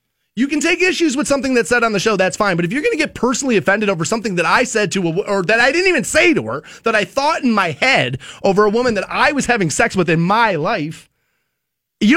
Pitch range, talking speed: 205-305 Hz, 270 wpm